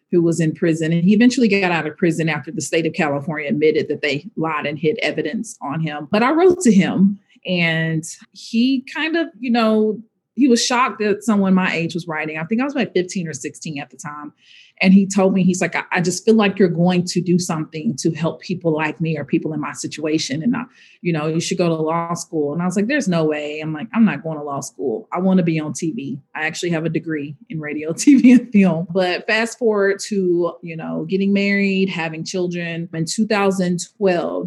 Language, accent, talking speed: English, American, 230 wpm